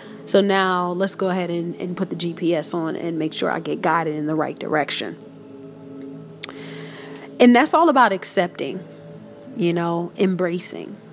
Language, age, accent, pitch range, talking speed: English, 30-49, American, 175-220 Hz, 155 wpm